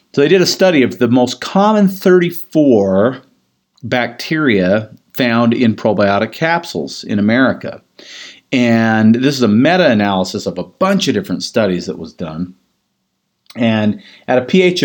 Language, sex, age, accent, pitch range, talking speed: English, male, 50-69, American, 100-150 Hz, 140 wpm